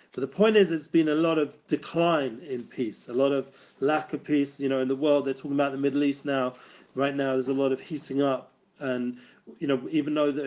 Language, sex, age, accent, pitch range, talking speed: English, male, 40-59, British, 130-150 Hz, 250 wpm